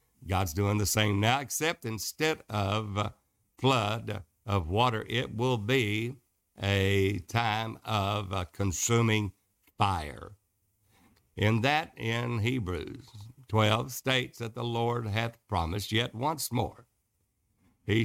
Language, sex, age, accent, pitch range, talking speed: English, male, 60-79, American, 100-125 Hz, 115 wpm